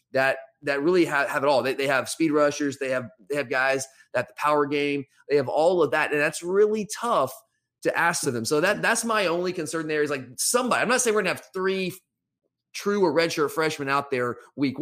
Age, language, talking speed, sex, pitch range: 30-49, English, 235 wpm, male, 135-190 Hz